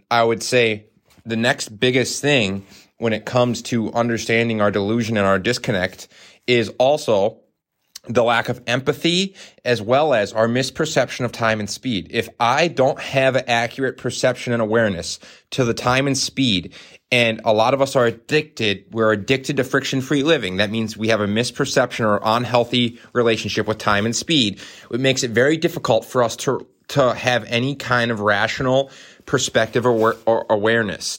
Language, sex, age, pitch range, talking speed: English, male, 30-49, 110-130 Hz, 170 wpm